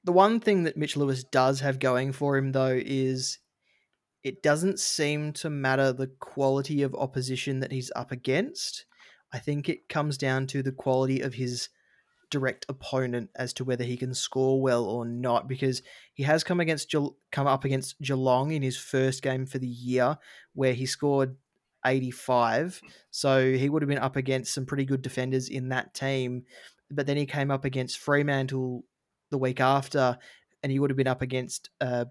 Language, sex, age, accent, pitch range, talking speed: English, male, 20-39, Australian, 130-140 Hz, 185 wpm